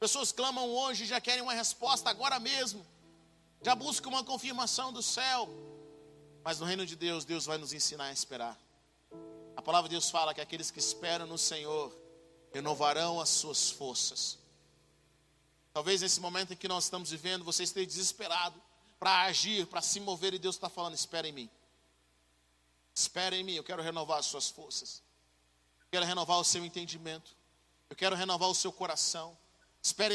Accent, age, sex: Brazilian, 40-59, male